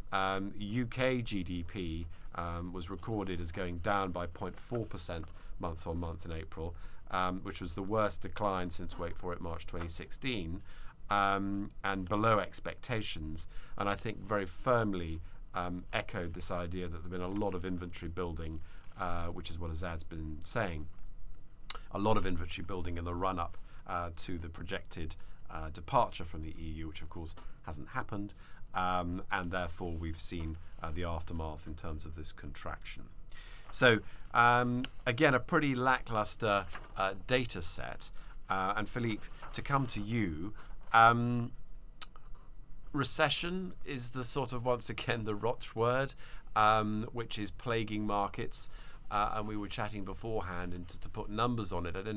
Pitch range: 85-110 Hz